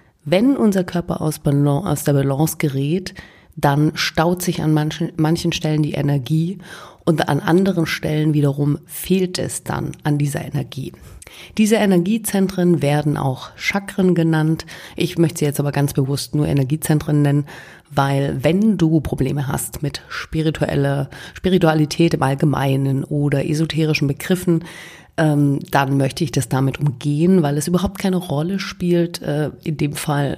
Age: 30-49